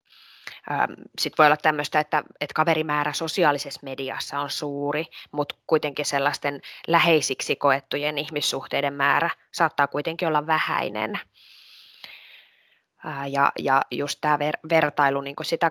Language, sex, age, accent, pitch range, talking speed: Finnish, female, 20-39, native, 140-160 Hz, 105 wpm